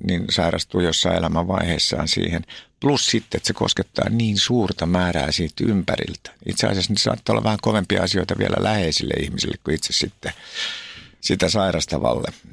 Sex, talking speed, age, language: male, 150 wpm, 50-69, Finnish